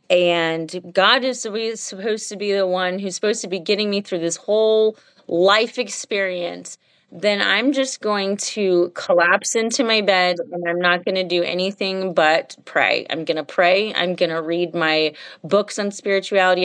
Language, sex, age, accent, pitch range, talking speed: English, female, 30-49, American, 185-230 Hz, 175 wpm